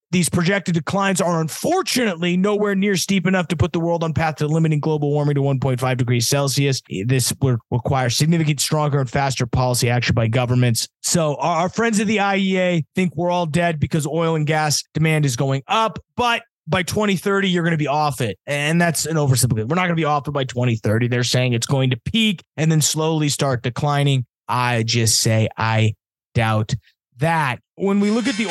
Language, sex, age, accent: English, male, 20-39, American